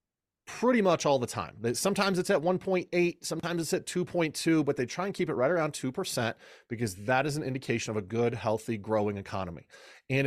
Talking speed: 200 wpm